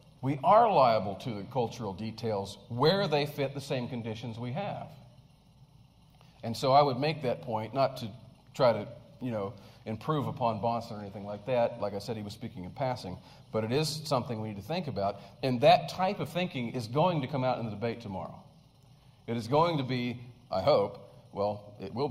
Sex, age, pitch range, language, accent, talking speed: male, 40-59, 115-145 Hz, English, American, 205 wpm